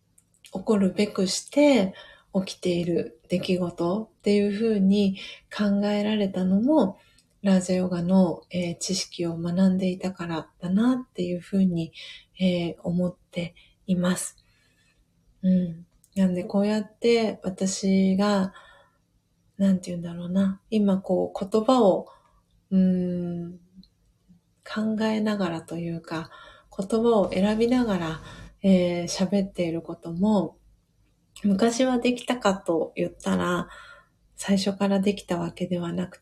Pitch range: 180-210 Hz